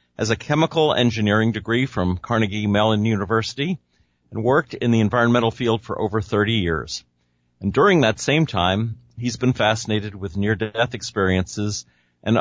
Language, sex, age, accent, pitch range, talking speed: English, male, 50-69, American, 95-125 Hz, 150 wpm